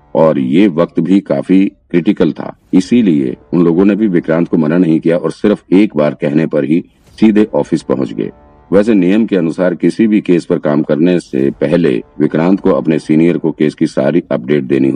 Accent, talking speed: native, 200 wpm